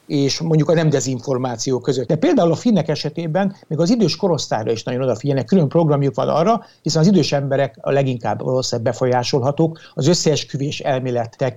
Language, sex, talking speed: Hungarian, male, 170 wpm